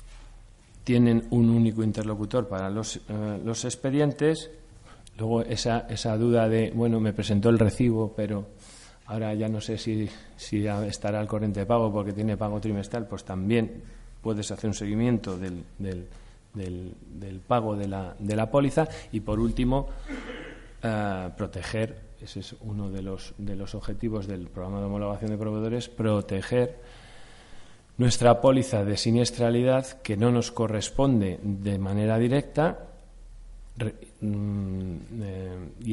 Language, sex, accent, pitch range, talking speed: Spanish, male, Spanish, 100-120 Hz, 130 wpm